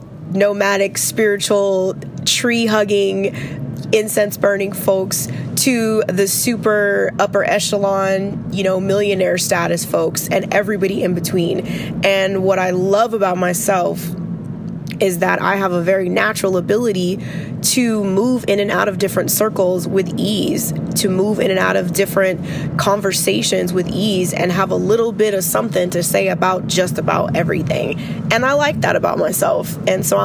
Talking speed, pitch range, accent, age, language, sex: 150 wpm, 180-205 Hz, American, 20-39, English, female